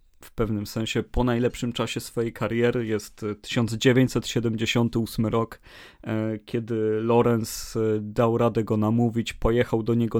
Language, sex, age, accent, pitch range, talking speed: Polish, male, 30-49, native, 110-125 Hz, 120 wpm